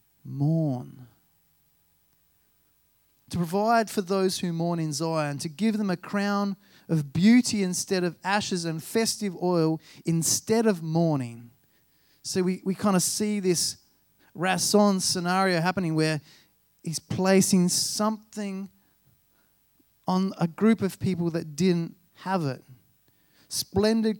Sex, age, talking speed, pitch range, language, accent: male, 30-49, 120 wpm, 150-200 Hz, English, Australian